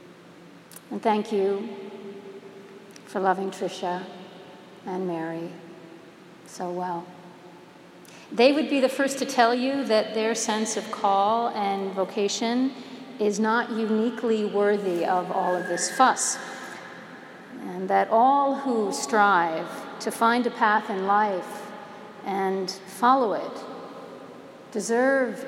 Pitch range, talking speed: 190-235 Hz, 115 wpm